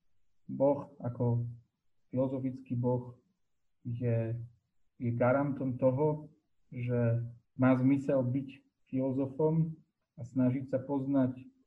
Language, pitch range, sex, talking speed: Slovak, 120-135 Hz, male, 85 wpm